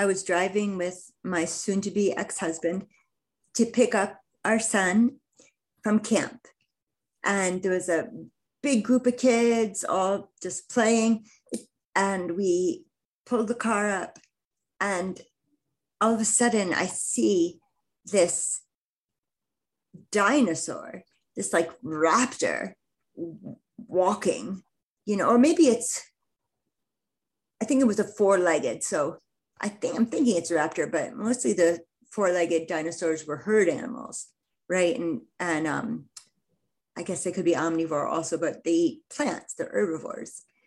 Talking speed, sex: 130 wpm, female